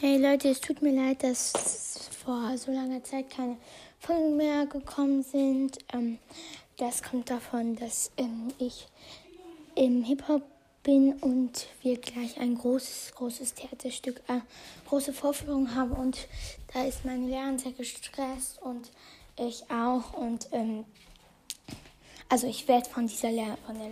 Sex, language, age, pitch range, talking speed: female, German, 20-39, 240-270 Hz, 140 wpm